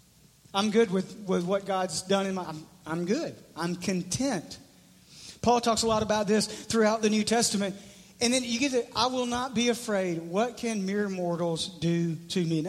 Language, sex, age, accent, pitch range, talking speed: English, male, 40-59, American, 180-215 Hz, 200 wpm